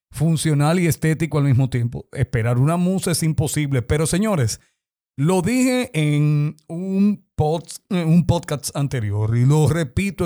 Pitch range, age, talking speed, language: 130-160 Hz, 50-69, 130 wpm, Spanish